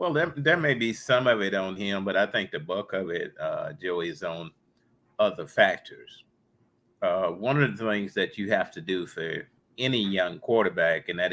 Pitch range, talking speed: 95-125 Hz, 200 wpm